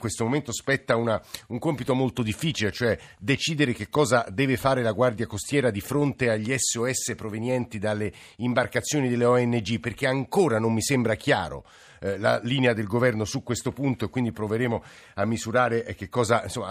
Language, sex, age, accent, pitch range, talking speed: Italian, male, 50-69, native, 110-130 Hz, 170 wpm